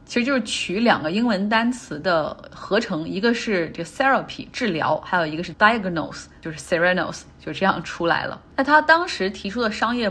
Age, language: 20-39, Chinese